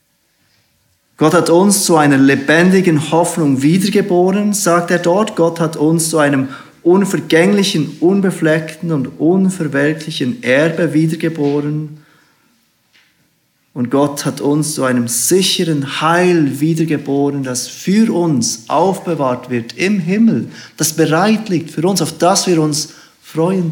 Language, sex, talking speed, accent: German, male, 120 wpm, German